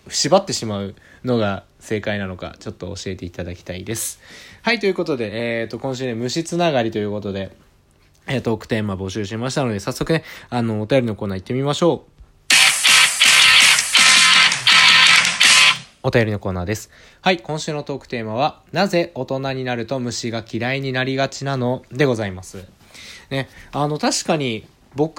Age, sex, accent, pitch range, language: 20-39, male, native, 100-140 Hz, Japanese